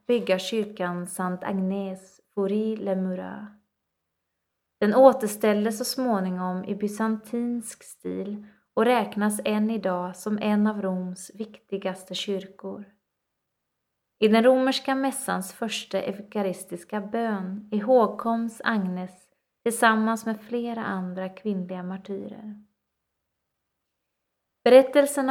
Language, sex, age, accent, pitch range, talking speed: Swedish, female, 20-39, native, 190-225 Hz, 90 wpm